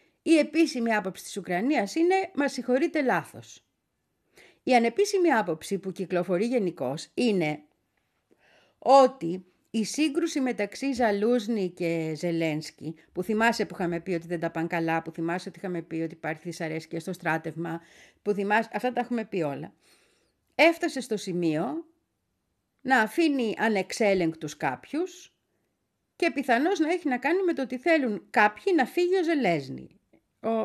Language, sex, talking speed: Greek, female, 145 wpm